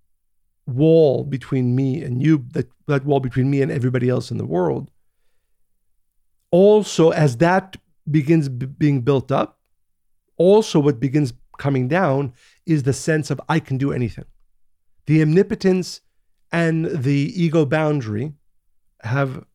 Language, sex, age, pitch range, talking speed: English, male, 50-69, 125-160 Hz, 130 wpm